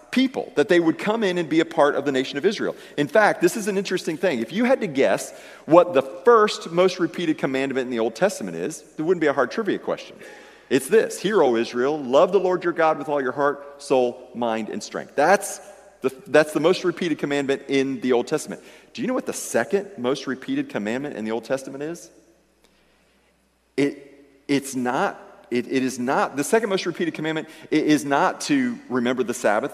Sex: male